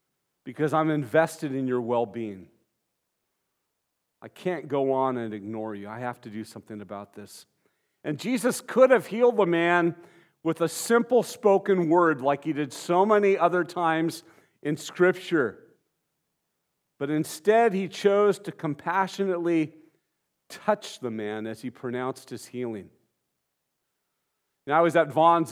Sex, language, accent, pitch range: male, English, American, 120-160 Hz